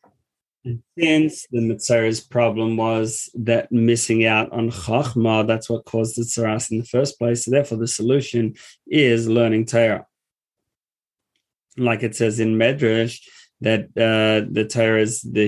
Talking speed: 145 wpm